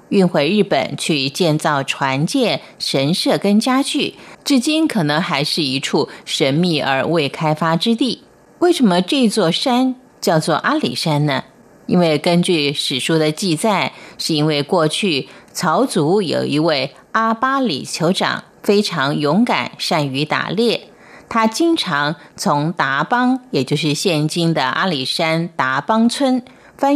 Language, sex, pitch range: Chinese, female, 150-225 Hz